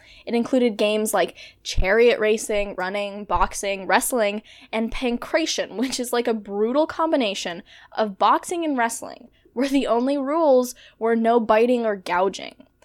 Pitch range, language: 215-275 Hz, English